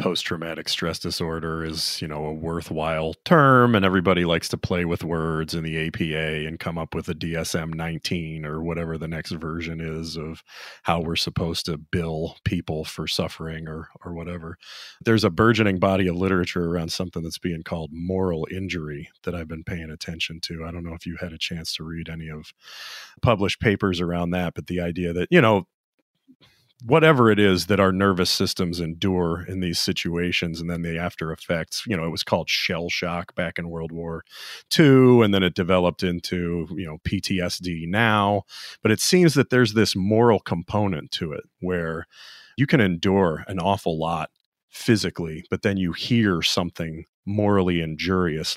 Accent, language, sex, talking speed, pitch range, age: American, English, male, 180 wpm, 80-95 Hz, 40-59